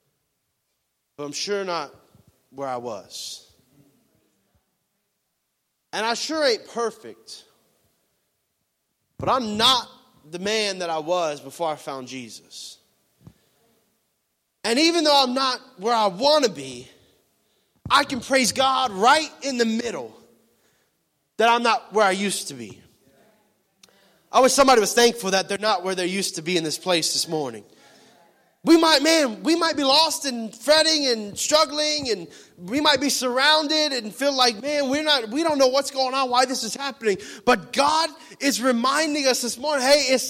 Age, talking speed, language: 30-49, 160 wpm, English